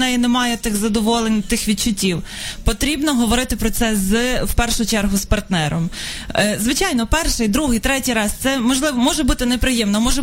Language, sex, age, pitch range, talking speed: Ukrainian, female, 20-39, 210-250 Hz, 165 wpm